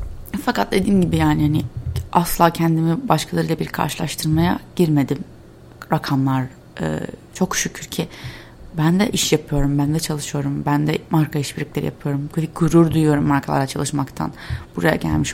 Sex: female